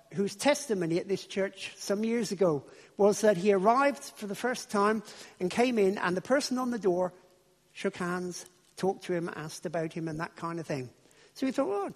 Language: English